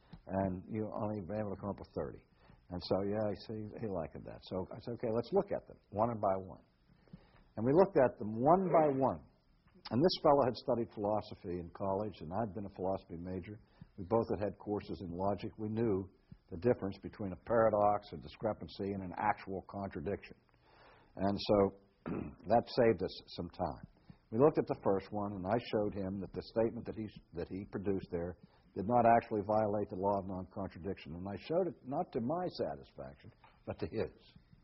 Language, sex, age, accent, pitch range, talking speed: English, male, 60-79, American, 95-115 Hz, 195 wpm